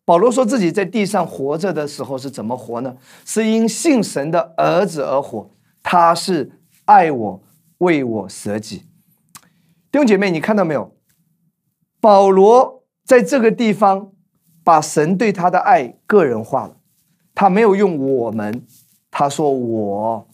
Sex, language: male, Chinese